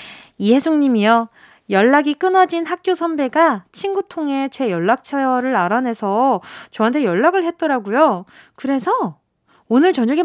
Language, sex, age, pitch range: Korean, female, 20-39, 225-345 Hz